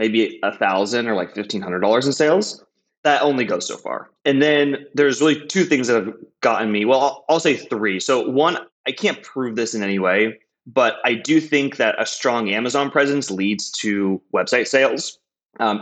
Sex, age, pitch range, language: male, 20-39, 105-140 Hz, English